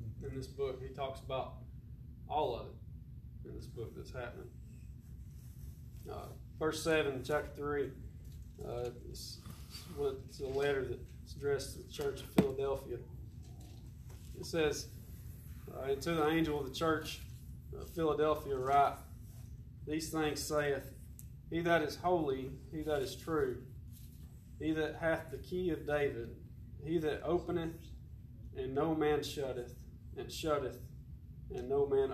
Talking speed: 135 wpm